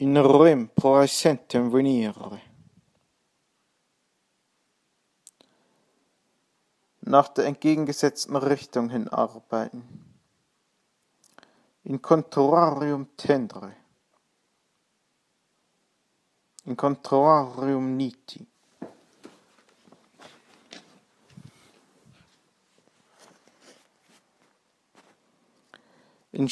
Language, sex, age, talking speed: English, male, 50-69, 40 wpm